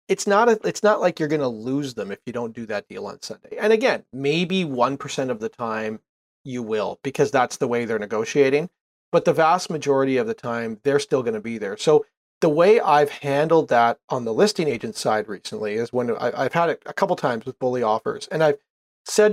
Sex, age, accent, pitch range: male, 40-59, American, 125-170 Hz